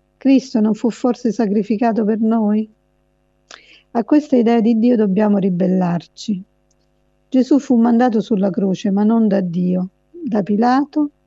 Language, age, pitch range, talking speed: Italian, 50-69, 195-235 Hz, 135 wpm